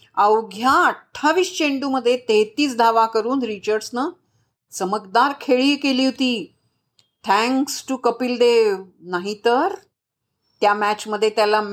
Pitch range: 215-285 Hz